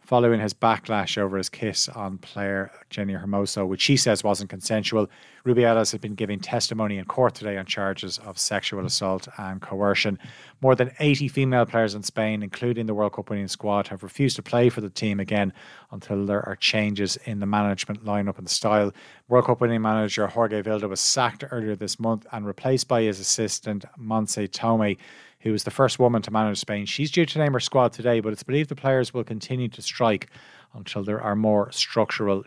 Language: English